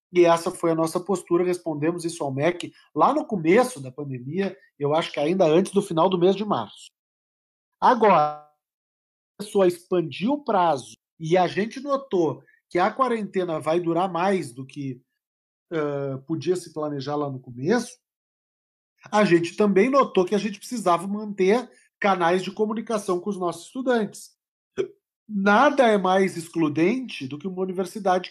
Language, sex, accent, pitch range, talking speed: Portuguese, male, Brazilian, 165-220 Hz, 155 wpm